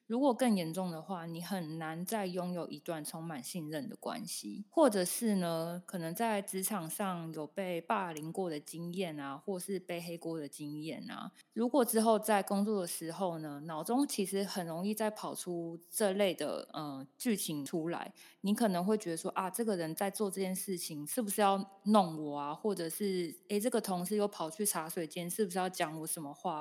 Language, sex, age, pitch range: Chinese, female, 20-39, 165-215 Hz